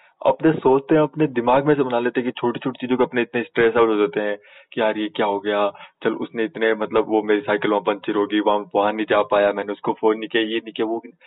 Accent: Indian